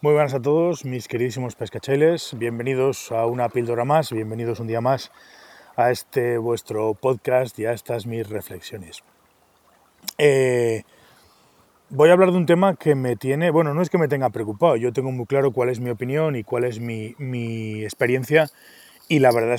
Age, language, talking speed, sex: 30-49, Spanish, 180 wpm, male